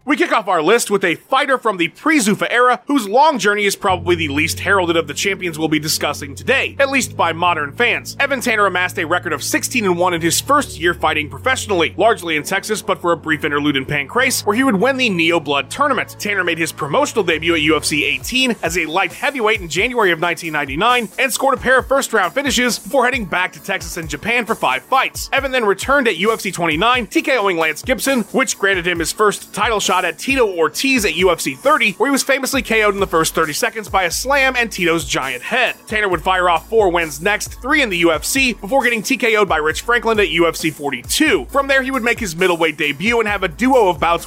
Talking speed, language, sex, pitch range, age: 230 wpm, English, male, 170-250 Hz, 30-49